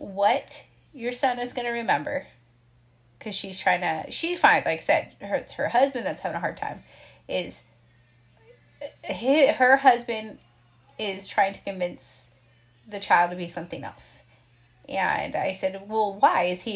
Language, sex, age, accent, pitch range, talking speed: English, female, 30-49, American, 180-250 Hz, 160 wpm